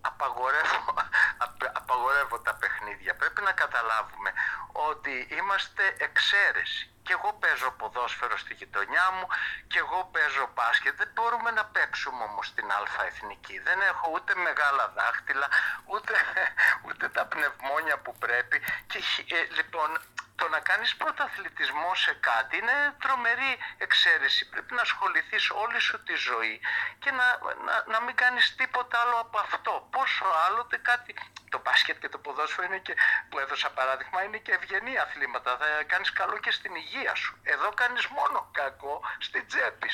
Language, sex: Greek, male